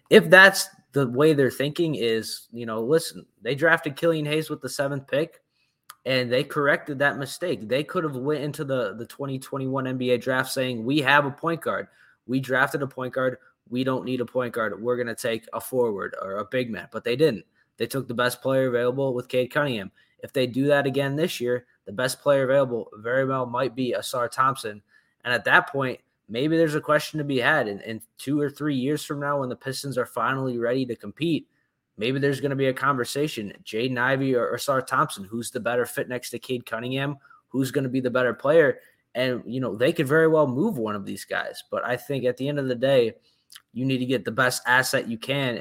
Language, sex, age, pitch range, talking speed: English, male, 20-39, 125-145 Hz, 230 wpm